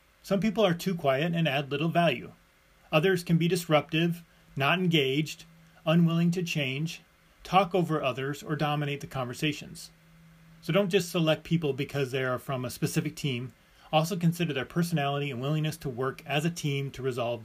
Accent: American